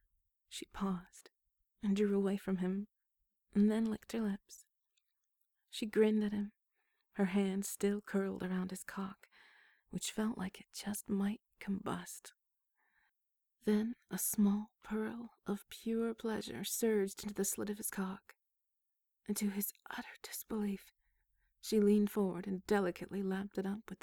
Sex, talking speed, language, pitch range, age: female, 145 wpm, English, 185-210 Hz, 30-49